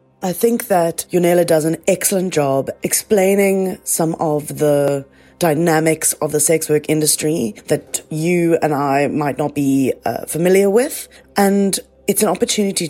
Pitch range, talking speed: 140-170 Hz, 150 wpm